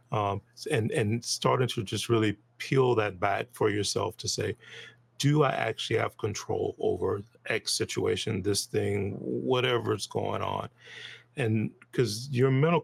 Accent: American